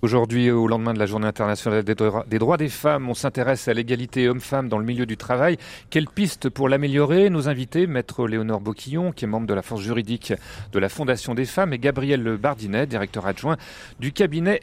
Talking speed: 200 wpm